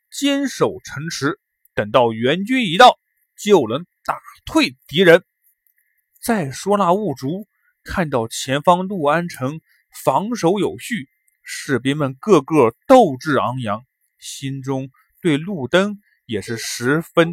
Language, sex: Chinese, male